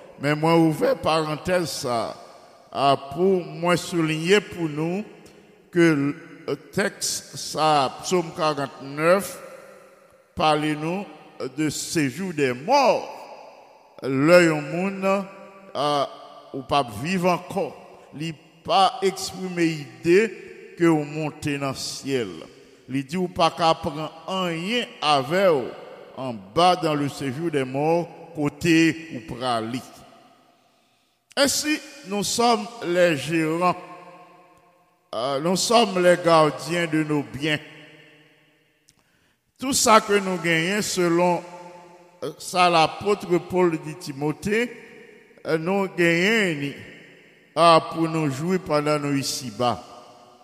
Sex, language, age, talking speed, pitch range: male, English, 50-69, 110 wpm, 150-185 Hz